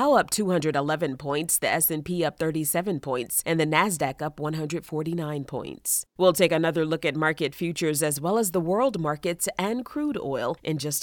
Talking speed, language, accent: 175 wpm, English, American